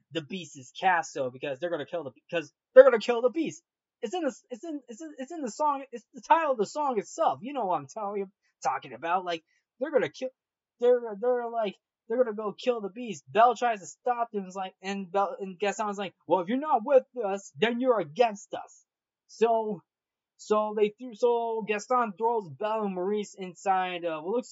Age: 20-39